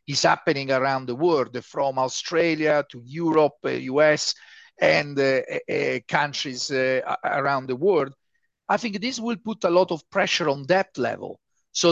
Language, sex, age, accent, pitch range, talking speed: English, male, 50-69, Italian, 135-170 Hz, 155 wpm